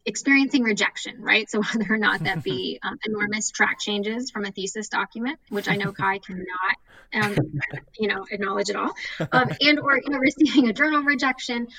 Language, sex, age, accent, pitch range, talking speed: English, female, 10-29, American, 195-240 Hz, 190 wpm